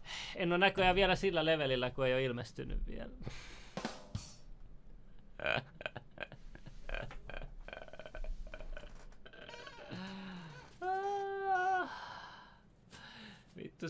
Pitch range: 130-180 Hz